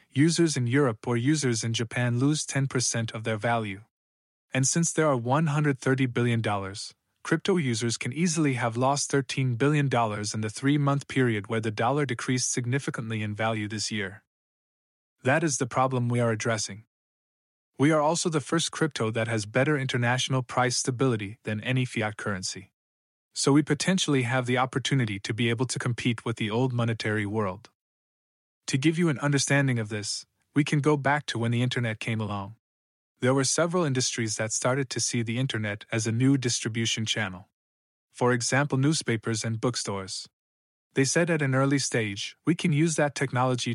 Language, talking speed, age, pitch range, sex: English, 175 wpm, 20-39, 110-140 Hz, male